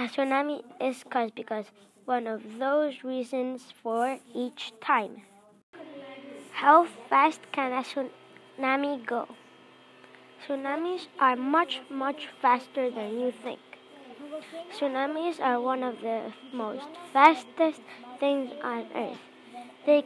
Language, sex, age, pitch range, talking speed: English, female, 20-39, 235-280 Hz, 110 wpm